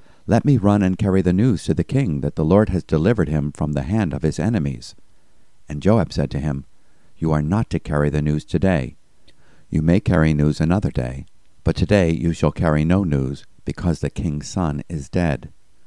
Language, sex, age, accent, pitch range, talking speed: English, male, 50-69, American, 75-95 Hz, 205 wpm